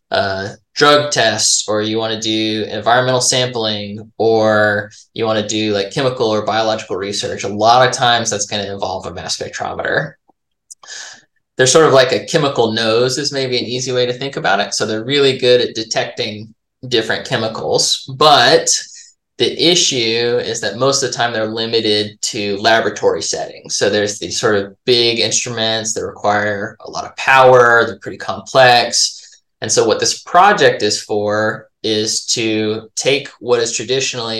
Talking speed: 170 wpm